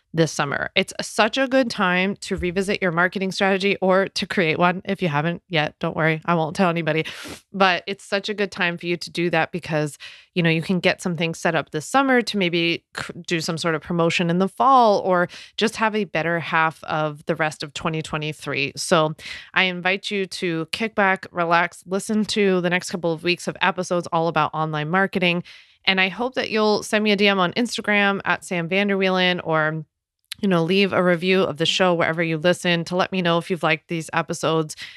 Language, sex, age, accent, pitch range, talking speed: English, female, 20-39, American, 165-195 Hz, 215 wpm